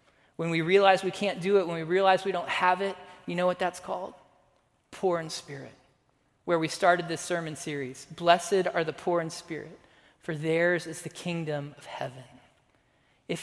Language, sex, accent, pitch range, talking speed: English, male, American, 150-185 Hz, 190 wpm